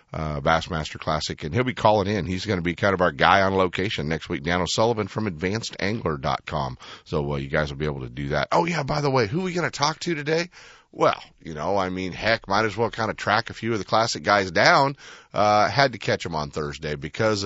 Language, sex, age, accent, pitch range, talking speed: English, male, 40-59, American, 75-105 Hz, 255 wpm